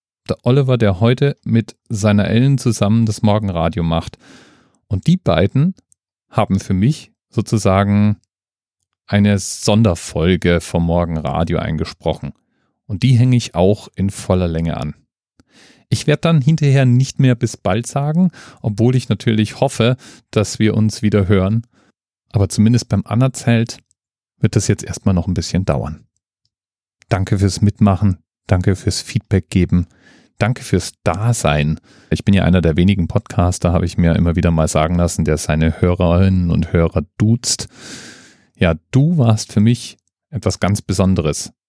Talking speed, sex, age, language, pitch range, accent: 145 wpm, male, 40-59, German, 90-115 Hz, German